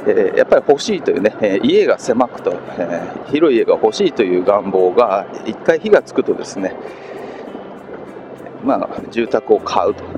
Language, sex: Japanese, male